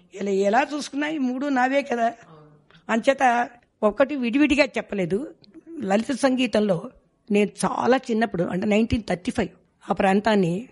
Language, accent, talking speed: Telugu, native, 120 wpm